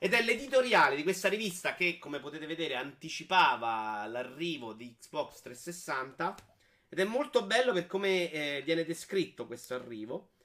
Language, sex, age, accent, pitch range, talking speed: Italian, male, 30-49, native, 130-185 Hz, 150 wpm